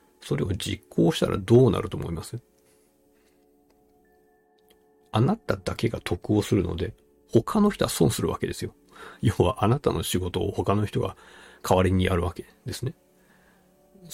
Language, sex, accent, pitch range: Japanese, male, native, 85-110 Hz